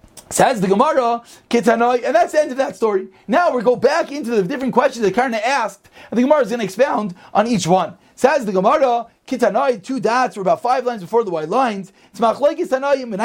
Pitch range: 225-285 Hz